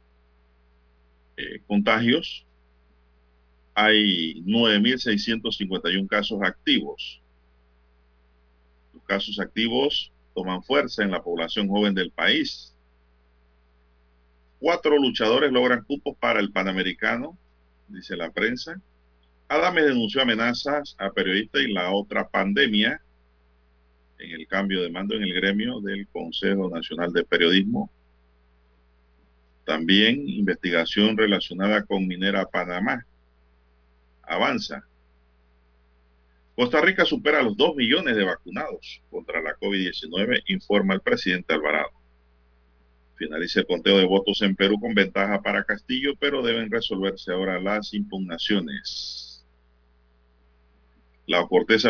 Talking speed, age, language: 105 wpm, 40-59, Spanish